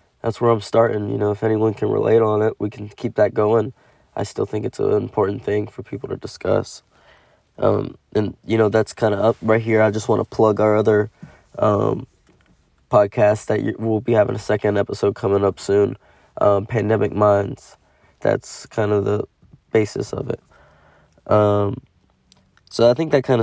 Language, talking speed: English, 190 wpm